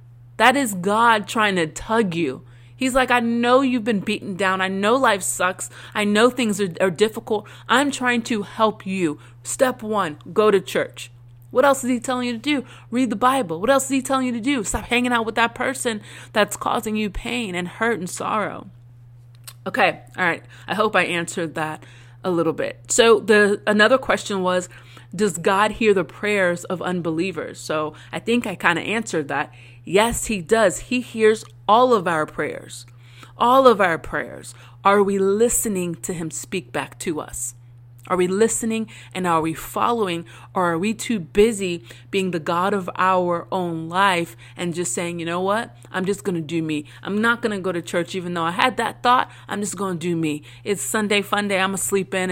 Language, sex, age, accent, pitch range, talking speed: English, female, 30-49, American, 160-220 Hz, 200 wpm